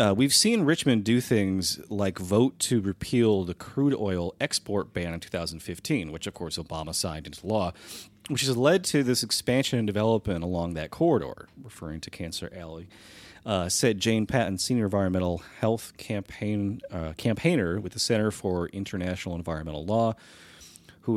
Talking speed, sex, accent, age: 160 wpm, male, American, 30-49